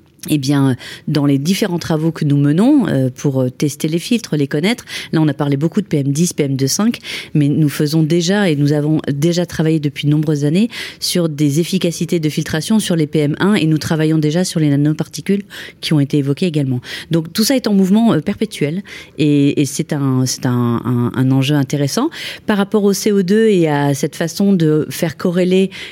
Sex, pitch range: female, 145-175 Hz